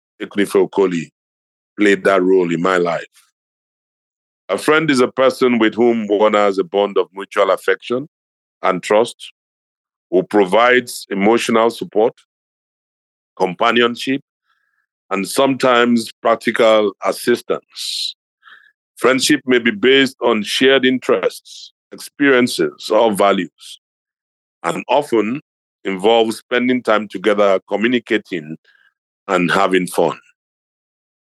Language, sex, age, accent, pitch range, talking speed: English, male, 50-69, Nigerian, 100-125 Hz, 100 wpm